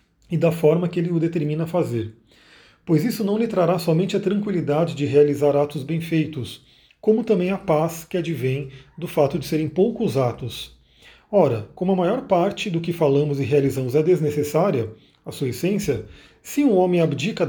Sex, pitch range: male, 150-185 Hz